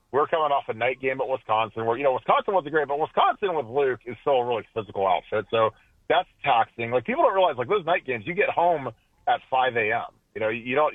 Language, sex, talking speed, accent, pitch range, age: English, male, 240 wpm, American, 110-145 Hz, 40-59